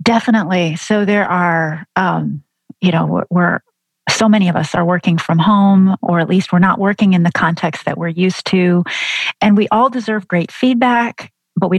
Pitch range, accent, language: 180-230 Hz, American, English